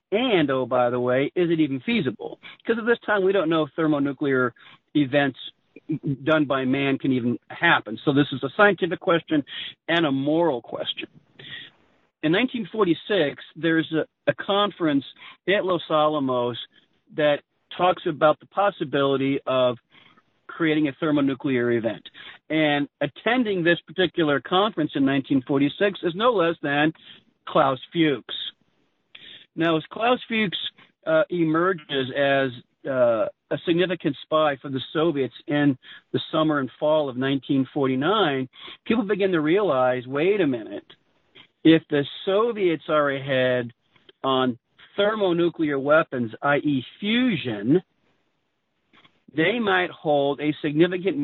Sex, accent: male, American